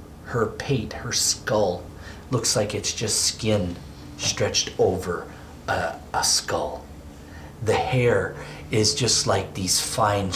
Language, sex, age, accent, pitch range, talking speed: English, male, 40-59, American, 75-105 Hz, 120 wpm